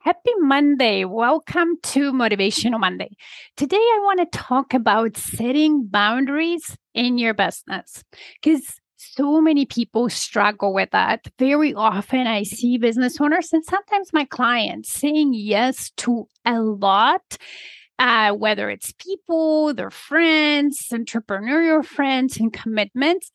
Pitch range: 220-310 Hz